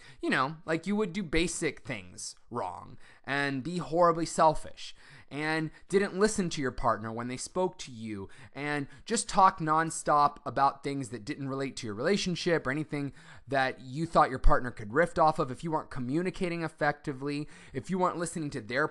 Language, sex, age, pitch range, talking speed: English, male, 20-39, 135-185 Hz, 185 wpm